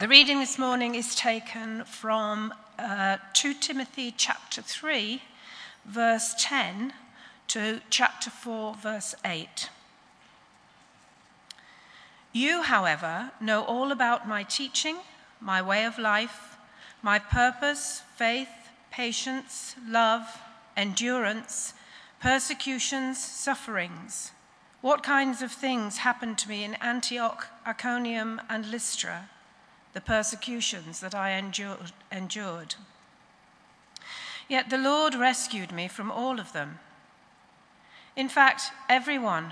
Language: English